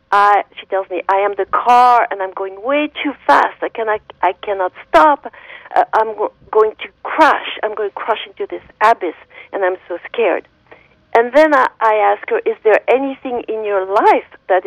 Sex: female